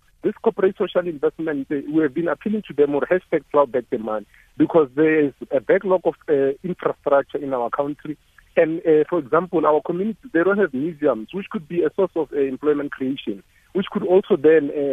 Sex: male